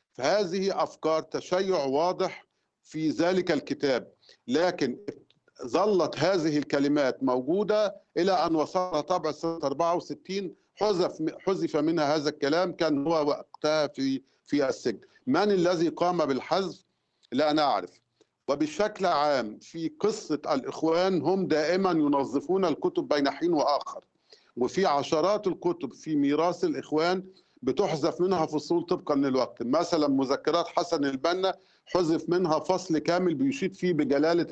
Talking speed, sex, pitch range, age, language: 120 wpm, male, 150-185 Hz, 50-69, Arabic